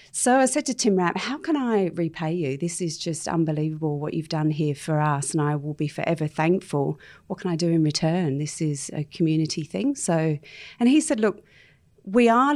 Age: 40-59